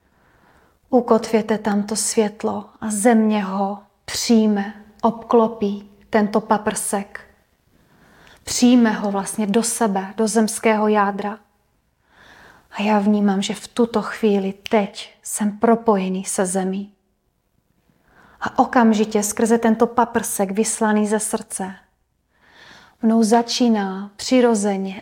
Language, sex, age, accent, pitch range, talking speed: Czech, female, 30-49, native, 205-225 Hz, 100 wpm